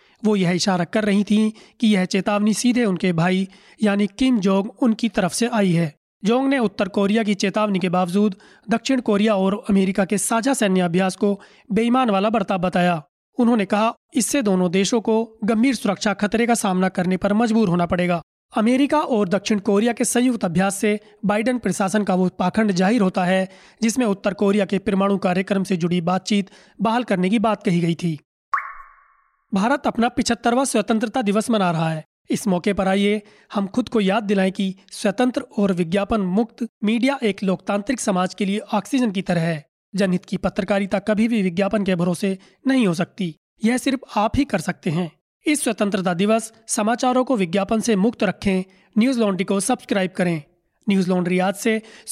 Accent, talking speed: native, 180 wpm